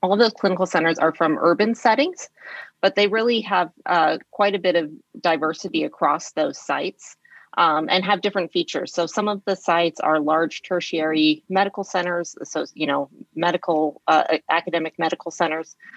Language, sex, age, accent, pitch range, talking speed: English, female, 30-49, American, 155-185 Hz, 170 wpm